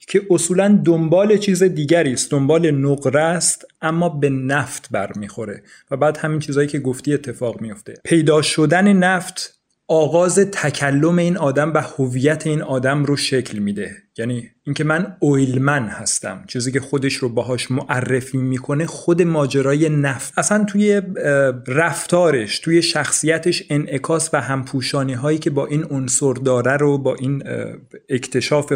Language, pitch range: Persian, 130-155 Hz